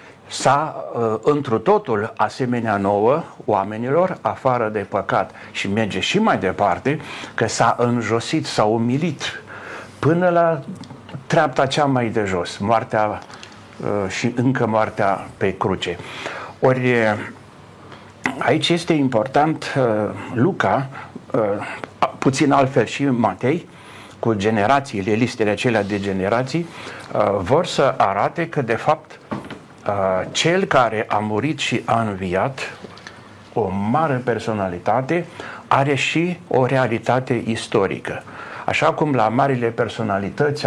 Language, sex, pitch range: Romanian, male, 105-145 Hz